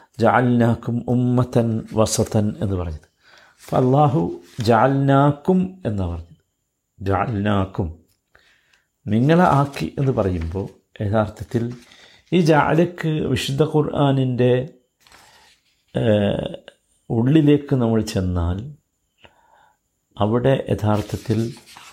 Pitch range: 100-140 Hz